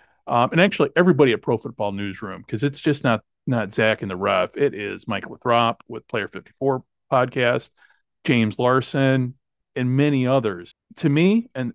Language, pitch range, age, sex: English, 105-130 Hz, 40-59, male